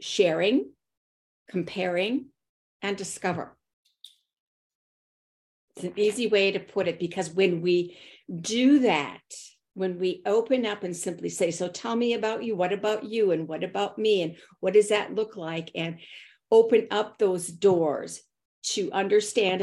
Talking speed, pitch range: 145 wpm, 175-210 Hz